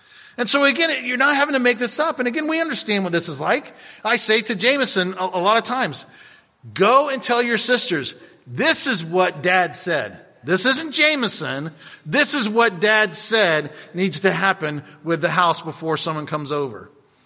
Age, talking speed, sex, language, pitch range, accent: 40-59, 190 wpm, male, English, 185-285 Hz, American